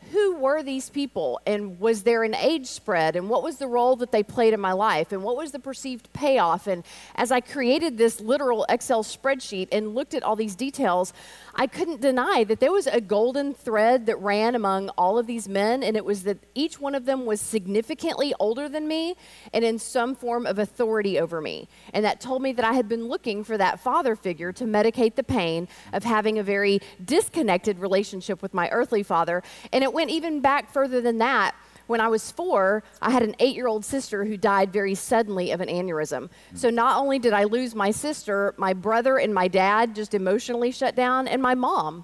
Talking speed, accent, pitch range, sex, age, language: 215 wpm, American, 205-265 Hz, female, 40-59, English